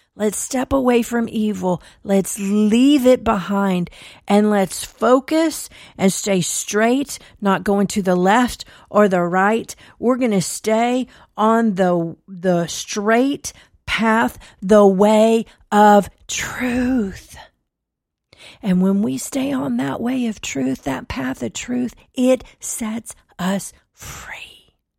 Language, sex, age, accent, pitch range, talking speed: English, female, 40-59, American, 195-255 Hz, 125 wpm